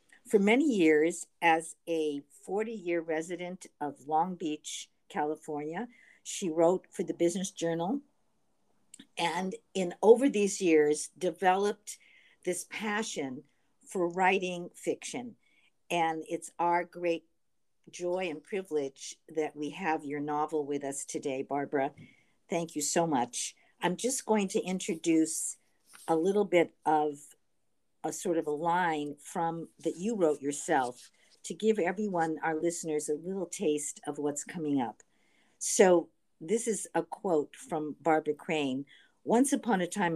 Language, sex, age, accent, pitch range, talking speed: English, female, 50-69, American, 155-205 Hz, 135 wpm